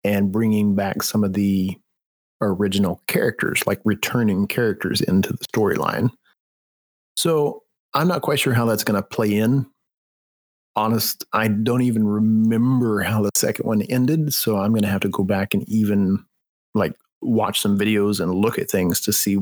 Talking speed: 170 wpm